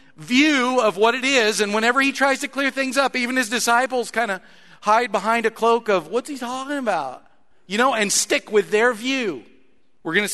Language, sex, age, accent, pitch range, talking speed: English, male, 40-59, American, 130-215 Hz, 215 wpm